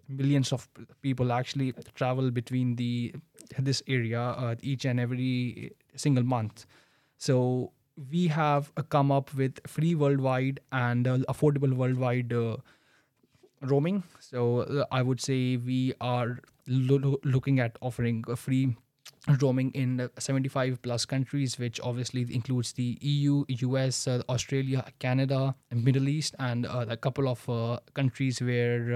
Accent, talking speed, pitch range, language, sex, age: Indian, 135 wpm, 125-140 Hz, English, male, 20-39